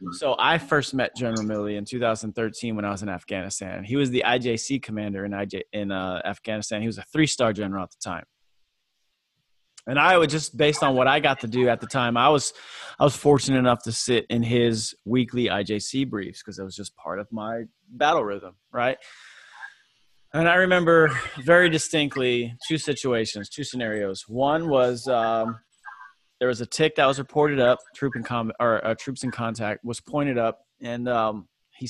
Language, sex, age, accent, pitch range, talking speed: English, male, 20-39, American, 110-135 Hz, 190 wpm